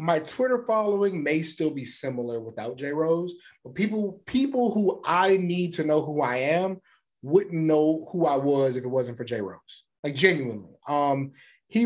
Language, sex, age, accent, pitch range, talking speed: English, male, 30-49, American, 130-175 Hz, 180 wpm